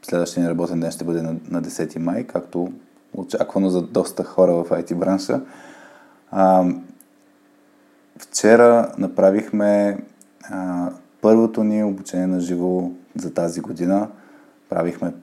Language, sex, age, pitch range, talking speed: Bulgarian, male, 20-39, 90-100 Hz, 105 wpm